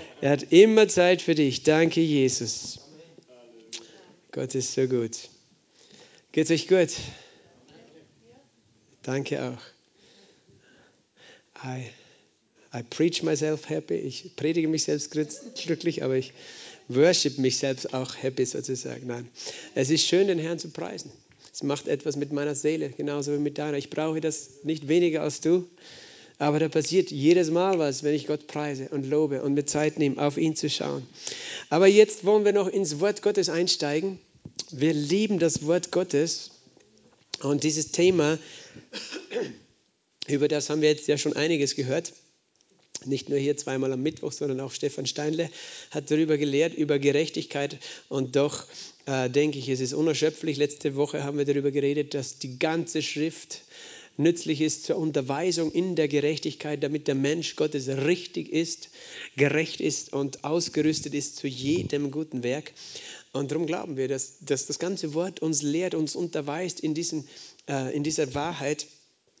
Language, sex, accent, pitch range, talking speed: German, male, German, 140-165 Hz, 155 wpm